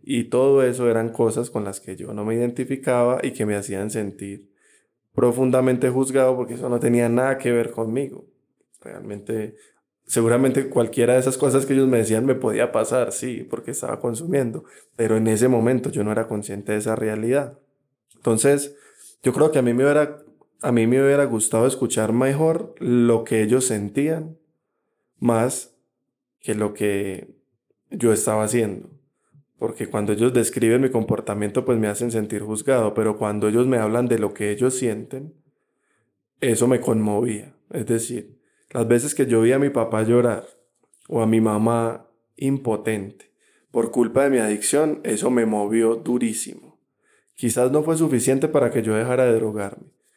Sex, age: male, 20-39